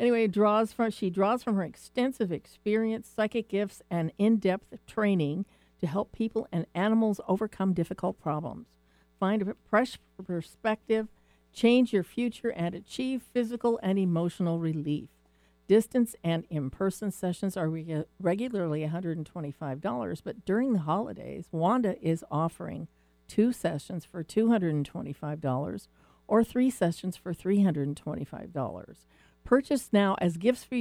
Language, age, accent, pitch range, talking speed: English, 50-69, American, 160-220 Hz, 145 wpm